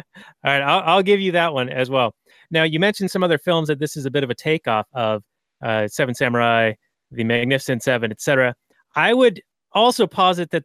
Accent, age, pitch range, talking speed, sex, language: American, 30-49, 130-165 Hz, 210 wpm, male, English